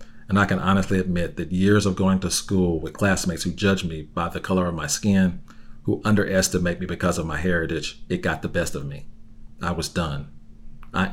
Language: English